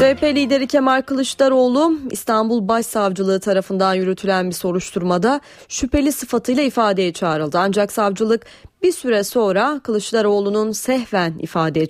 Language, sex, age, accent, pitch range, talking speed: Turkish, female, 30-49, native, 180-235 Hz, 110 wpm